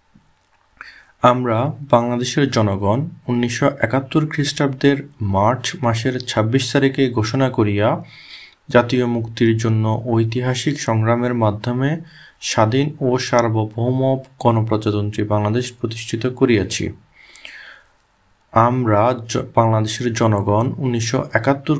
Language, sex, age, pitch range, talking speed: Bengali, male, 30-49, 110-130 Hz, 85 wpm